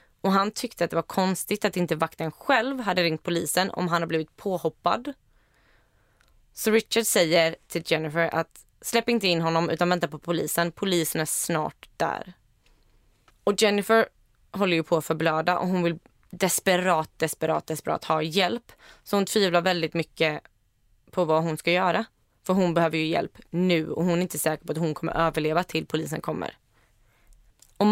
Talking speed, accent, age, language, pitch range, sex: 175 wpm, native, 20-39, Swedish, 160-200 Hz, female